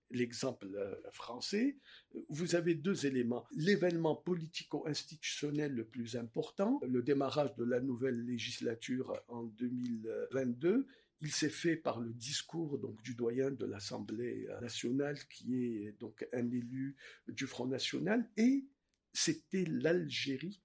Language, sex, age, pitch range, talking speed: French, male, 50-69, 130-195 Hz, 115 wpm